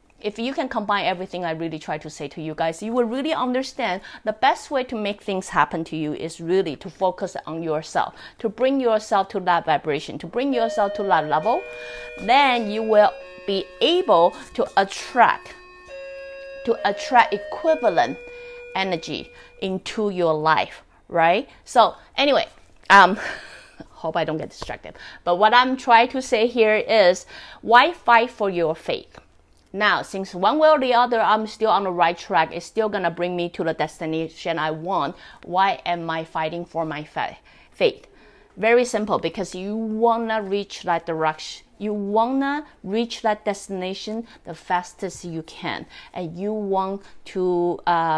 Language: English